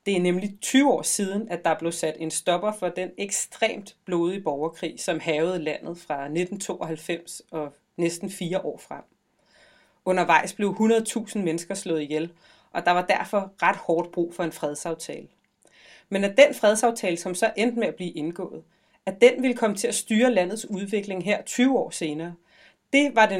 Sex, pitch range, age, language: female, 170-235 Hz, 30-49, Danish